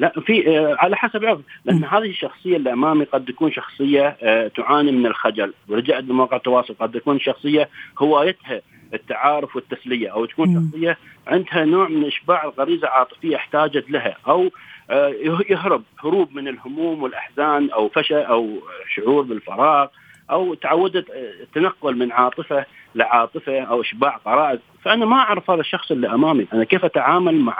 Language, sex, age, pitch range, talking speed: Arabic, male, 40-59, 130-170 Hz, 150 wpm